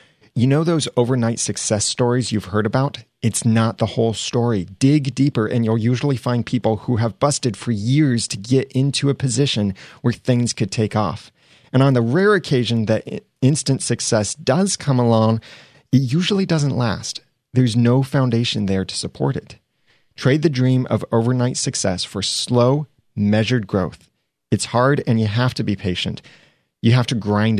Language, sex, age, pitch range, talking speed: English, male, 30-49, 105-135 Hz, 175 wpm